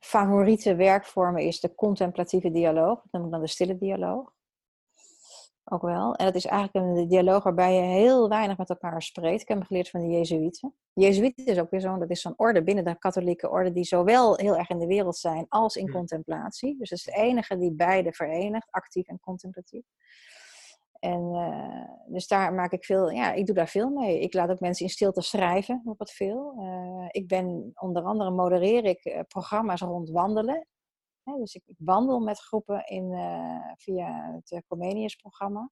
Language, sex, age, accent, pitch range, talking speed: Dutch, female, 30-49, Dutch, 175-210 Hz, 195 wpm